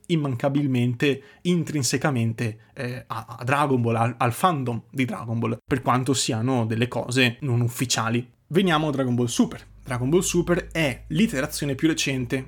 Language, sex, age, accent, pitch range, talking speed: Italian, male, 30-49, native, 120-160 Hz, 150 wpm